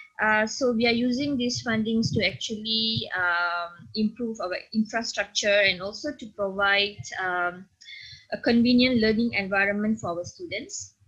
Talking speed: 135 wpm